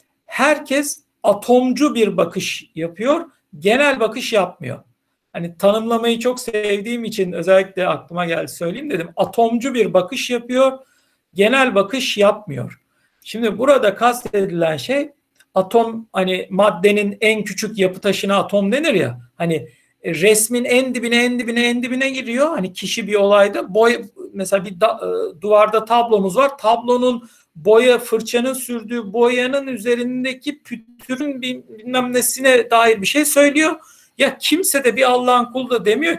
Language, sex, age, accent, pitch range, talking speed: Turkish, male, 60-79, native, 200-255 Hz, 135 wpm